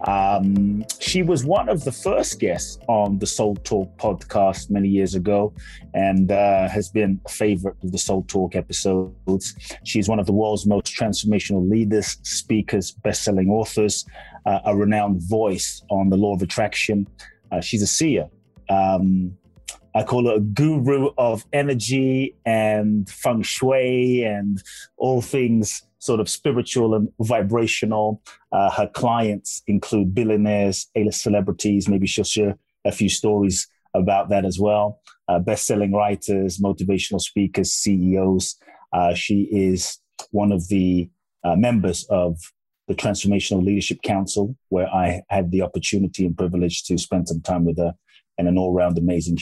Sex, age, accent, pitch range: male, 30-49, British, 95-105 Hz